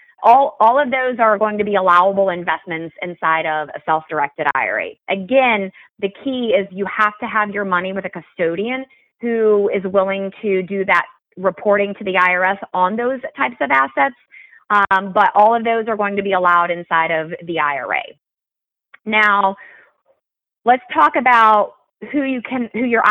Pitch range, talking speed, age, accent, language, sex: 180-230 Hz, 170 wpm, 30-49, American, English, female